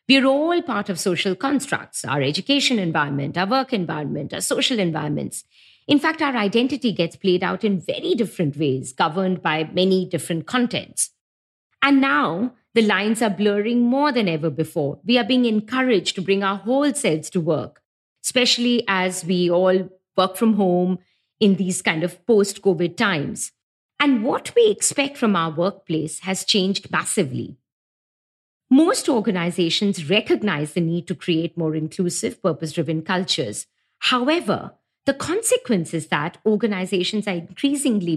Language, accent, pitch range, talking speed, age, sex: English, Indian, 170-240 Hz, 150 wpm, 50-69, female